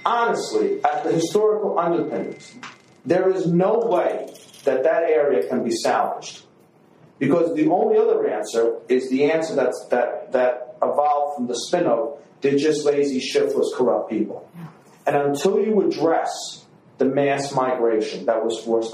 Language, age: English, 40-59